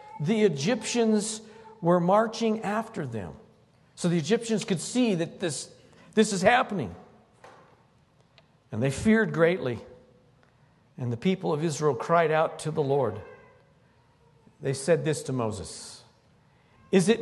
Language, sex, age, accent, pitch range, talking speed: English, male, 50-69, American, 160-220 Hz, 130 wpm